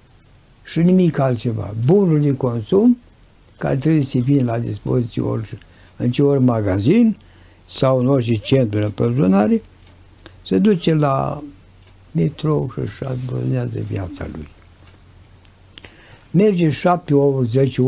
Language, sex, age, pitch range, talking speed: Romanian, male, 60-79, 95-135 Hz, 115 wpm